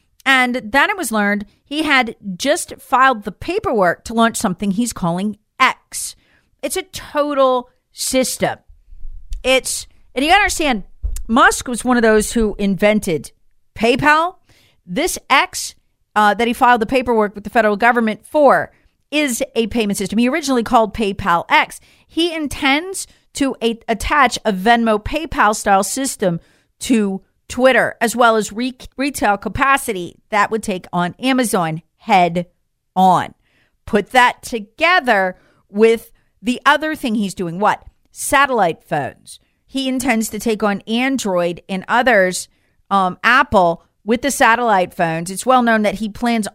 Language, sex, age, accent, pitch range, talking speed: English, female, 40-59, American, 200-260 Hz, 145 wpm